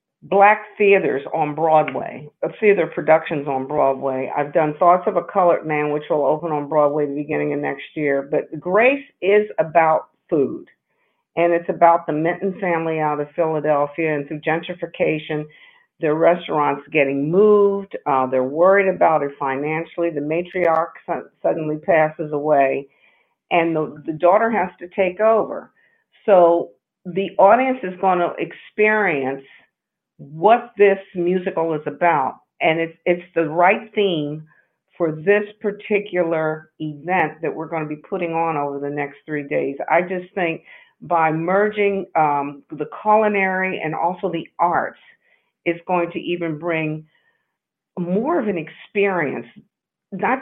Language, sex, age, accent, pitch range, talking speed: English, female, 50-69, American, 150-195 Hz, 145 wpm